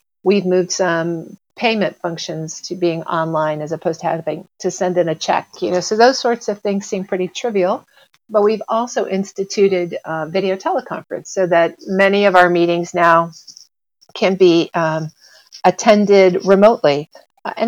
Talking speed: 155 wpm